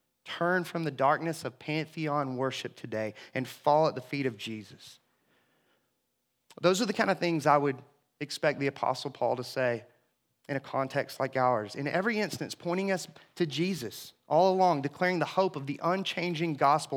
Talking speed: 175 wpm